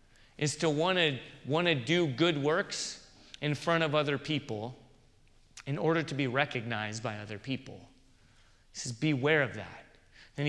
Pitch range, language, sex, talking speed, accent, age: 130-170 Hz, English, male, 160 wpm, American, 30-49